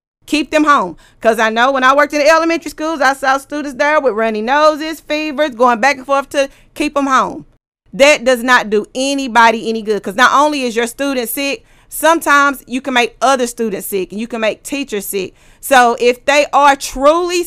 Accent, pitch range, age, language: American, 220-280 Hz, 30-49, English